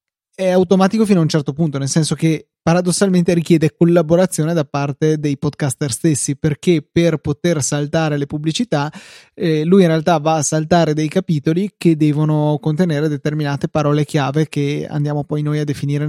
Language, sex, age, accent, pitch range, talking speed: Italian, male, 20-39, native, 145-170 Hz, 170 wpm